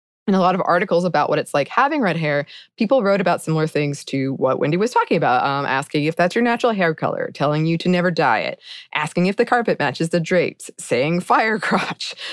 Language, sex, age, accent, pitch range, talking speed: English, female, 20-39, American, 150-190 Hz, 230 wpm